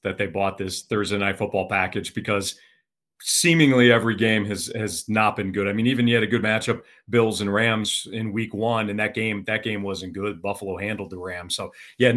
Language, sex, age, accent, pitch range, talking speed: English, male, 40-59, American, 100-120 Hz, 215 wpm